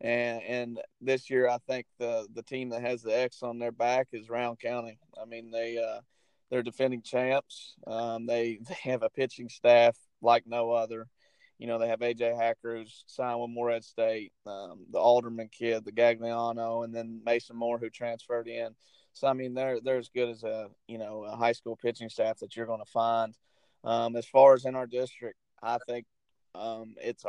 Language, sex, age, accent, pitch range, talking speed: English, male, 30-49, American, 115-125 Hz, 200 wpm